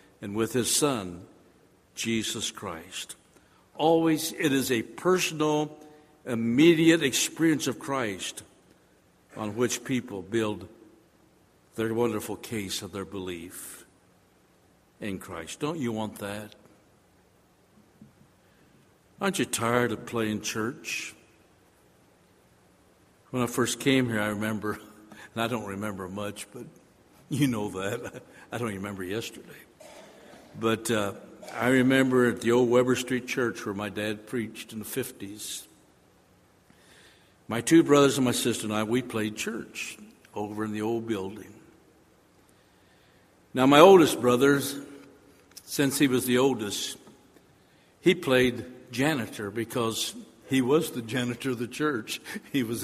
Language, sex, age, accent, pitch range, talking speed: English, male, 60-79, American, 105-130 Hz, 130 wpm